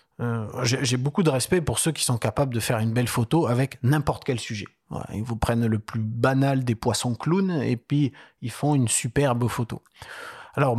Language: French